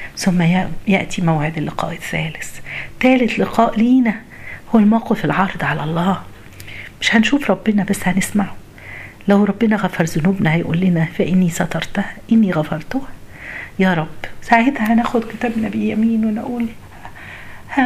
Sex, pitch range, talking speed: female, 175-230 Hz, 120 wpm